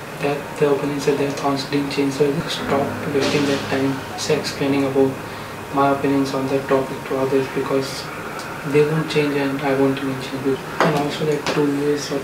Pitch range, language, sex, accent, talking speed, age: 135-145 Hz, Hindi, male, native, 190 wpm, 20-39